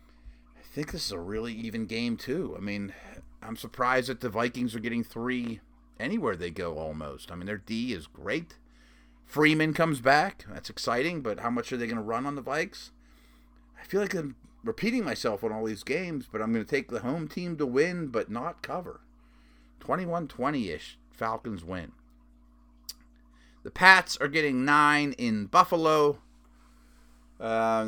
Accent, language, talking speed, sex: American, English, 170 wpm, male